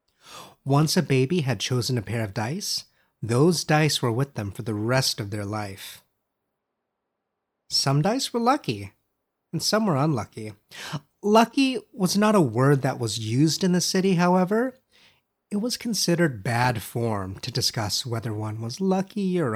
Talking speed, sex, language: 160 wpm, male, English